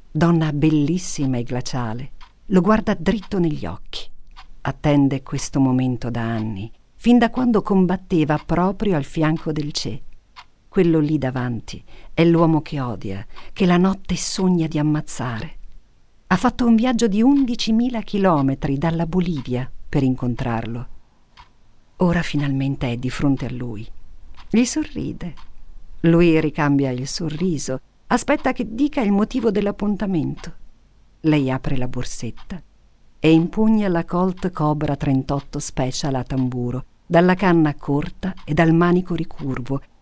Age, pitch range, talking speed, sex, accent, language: 50-69, 130-180 Hz, 130 wpm, female, native, Italian